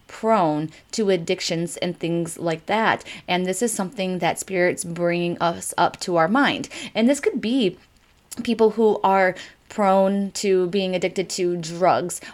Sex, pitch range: female, 175-205 Hz